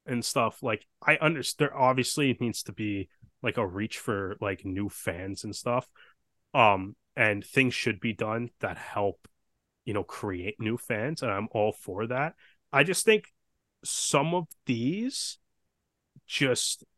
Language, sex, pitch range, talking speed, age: English, male, 105-130 Hz, 155 wpm, 20-39